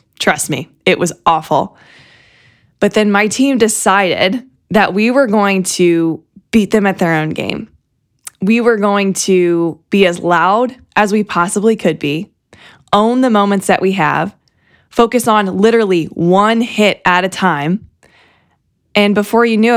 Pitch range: 180-220 Hz